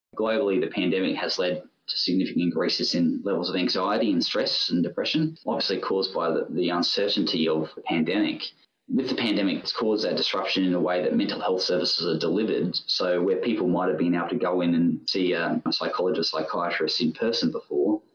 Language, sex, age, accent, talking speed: English, male, 20-39, Australian, 200 wpm